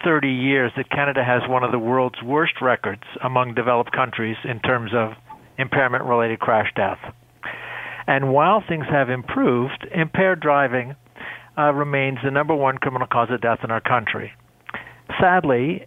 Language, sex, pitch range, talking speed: English, male, 125-155 Hz, 150 wpm